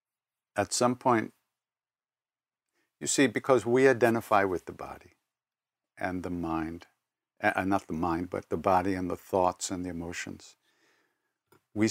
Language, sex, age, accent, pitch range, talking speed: English, male, 60-79, American, 90-115 Hz, 140 wpm